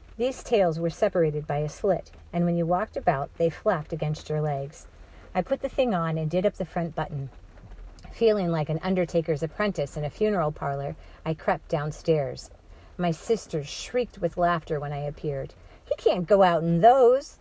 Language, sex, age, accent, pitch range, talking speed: English, female, 40-59, American, 150-180 Hz, 185 wpm